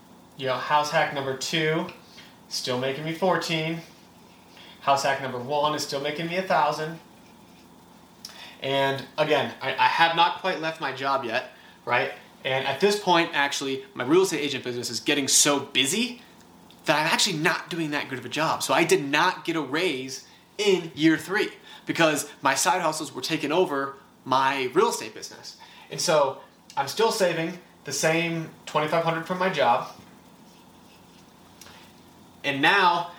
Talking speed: 160 wpm